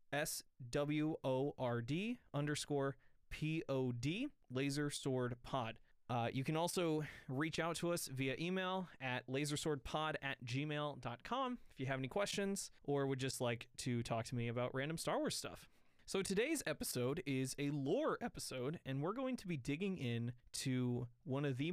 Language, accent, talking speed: English, American, 155 wpm